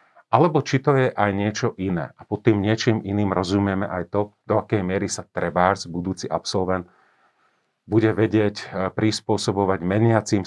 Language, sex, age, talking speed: Slovak, male, 40-59, 150 wpm